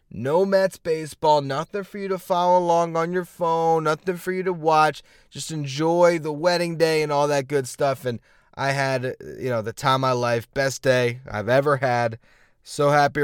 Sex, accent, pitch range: male, American, 140-185 Hz